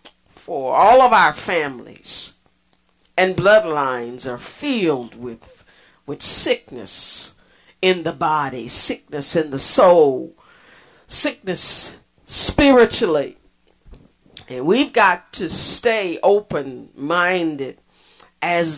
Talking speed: 85 wpm